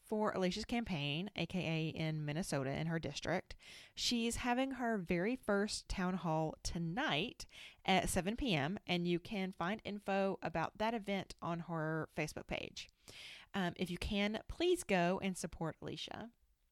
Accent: American